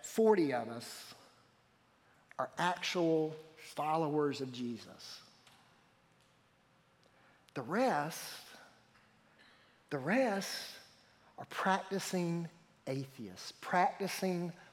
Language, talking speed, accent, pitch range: English, 65 wpm, American, 160-230 Hz